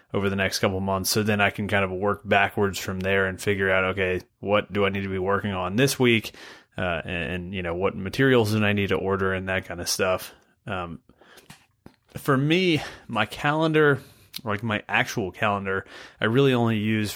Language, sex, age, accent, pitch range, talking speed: English, male, 30-49, American, 95-110 Hz, 205 wpm